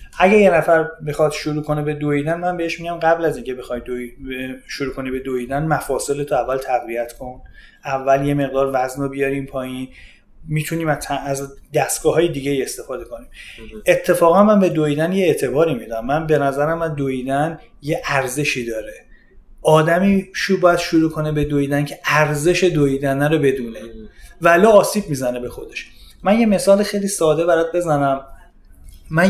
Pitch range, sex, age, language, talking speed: 140-195 Hz, male, 30-49, Persian, 155 wpm